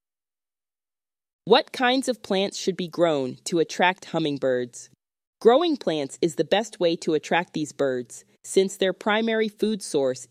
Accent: American